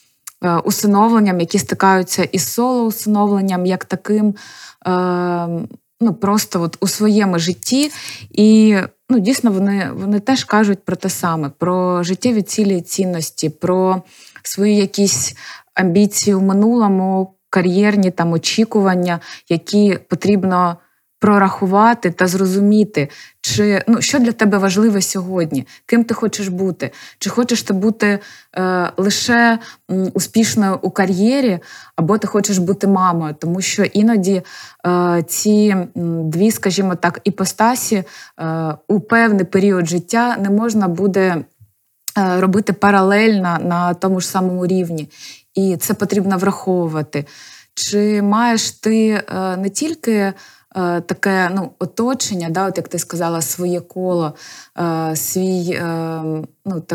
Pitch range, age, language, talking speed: 175-210 Hz, 20-39, Ukrainian, 120 wpm